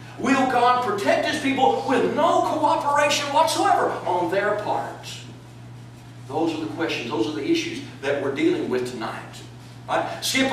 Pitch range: 195-275 Hz